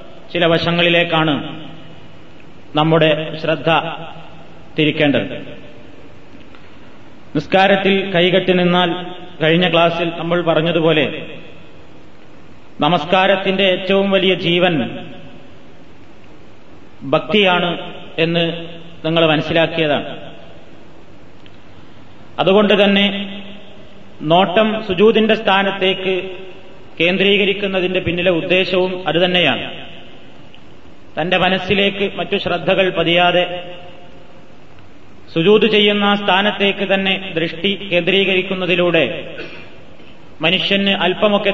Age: 30-49